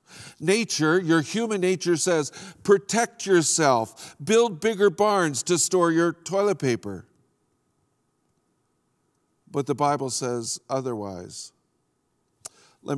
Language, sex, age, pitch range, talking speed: English, male, 50-69, 125-160 Hz, 95 wpm